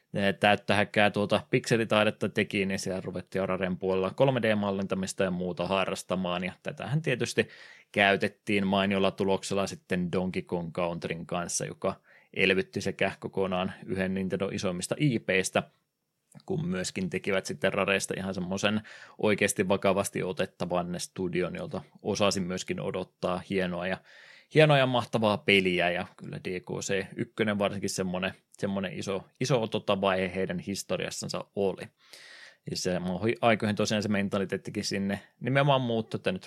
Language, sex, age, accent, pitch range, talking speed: Finnish, male, 20-39, native, 95-105 Hz, 120 wpm